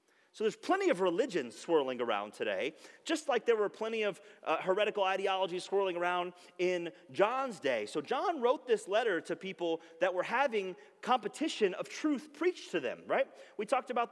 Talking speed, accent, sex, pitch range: 180 wpm, American, male, 135-205 Hz